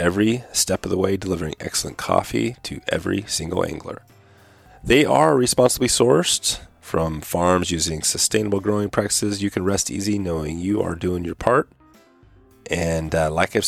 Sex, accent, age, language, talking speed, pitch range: male, American, 30-49, English, 160 wpm, 80-100 Hz